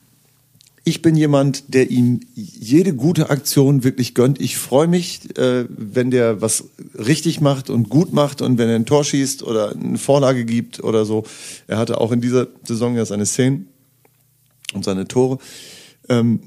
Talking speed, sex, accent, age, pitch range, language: 165 wpm, male, German, 50-69, 115-135 Hz, German